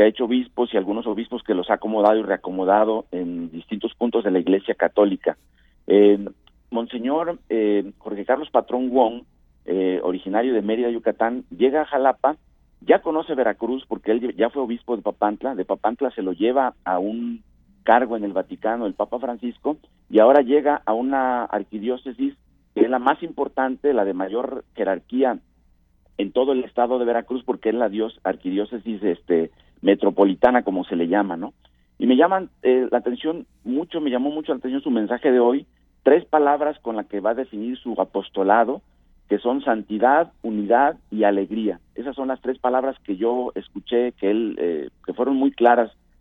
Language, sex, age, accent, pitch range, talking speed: Spanish, male, 50-69, Mexican, 100-130 Hz, 180 wpm